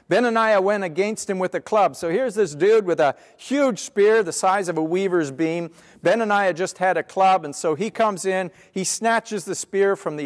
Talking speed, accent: 215 wpm, American